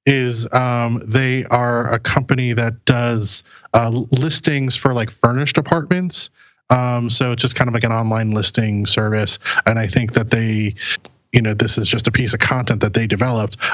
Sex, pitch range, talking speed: male, 110-130 Hz, 185 wpm